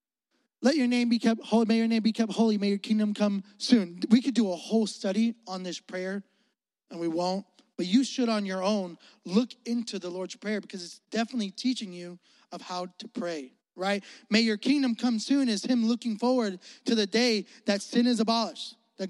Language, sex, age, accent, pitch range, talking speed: English, male, 20-39, American, 205-250 Hz, 210 wpm